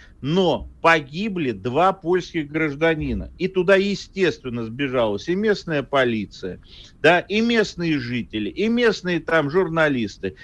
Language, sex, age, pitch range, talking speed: Russian, male, 50-69, 125-180 Hz, 115 wpm